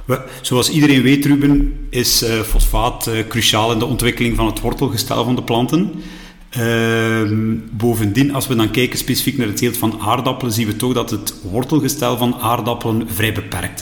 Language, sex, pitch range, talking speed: Dutch, male, 105-135 Hz, 175 wpm